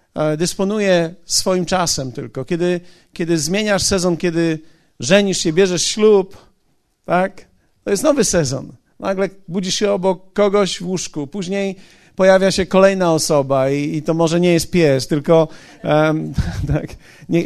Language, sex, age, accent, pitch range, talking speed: Polish, male, 50-69, native, 150-185 Hz, 135 wpm